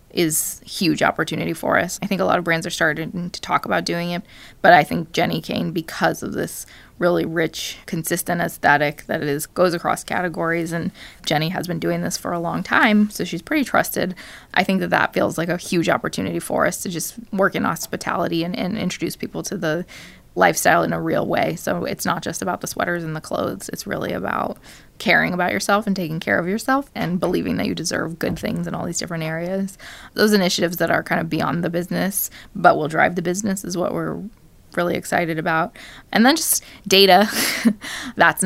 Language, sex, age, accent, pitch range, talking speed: English, female, 20-39, American, 170-200 Hz, 210 wpm